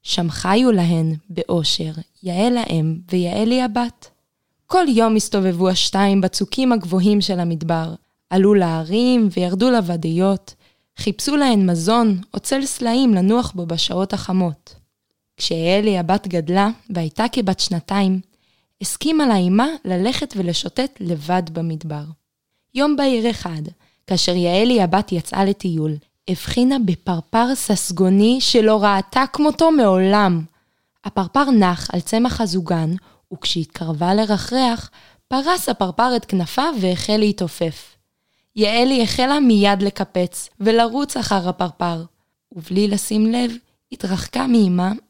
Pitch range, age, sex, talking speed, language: 175-235 Hz, 20-39, female, 110 wpm, Hebrew